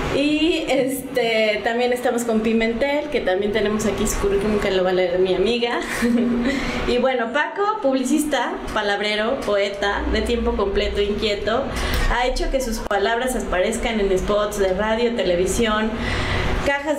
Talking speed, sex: 140 wpm, female